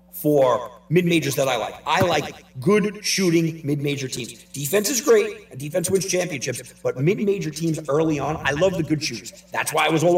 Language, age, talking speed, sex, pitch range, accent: English, 40-59, 195 wpm, male, 140-185 Hz, American